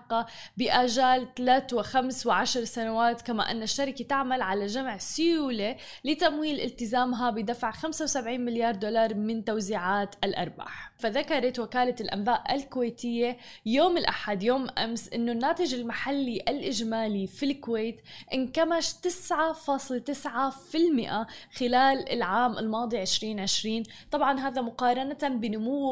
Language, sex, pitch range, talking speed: Arabic, female, 225-275 Hz, 110 wpm